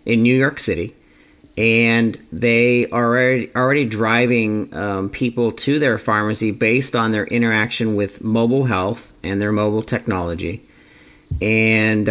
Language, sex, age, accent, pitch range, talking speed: English, male, 40-59, American, 100-115 Hz, 130 wpm